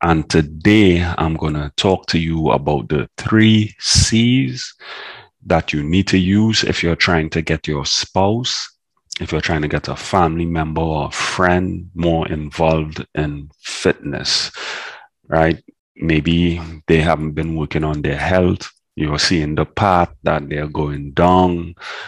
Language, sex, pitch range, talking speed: English, male, 75-90 Hz, 150 wpm